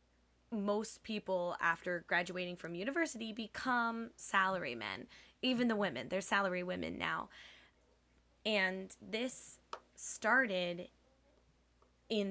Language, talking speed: English, 95 wpm